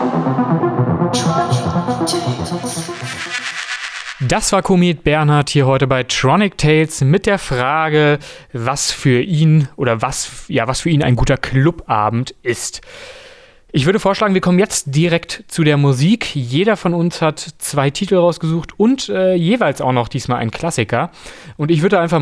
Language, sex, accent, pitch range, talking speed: German, male, German, 130-170 Hz, 145 wpm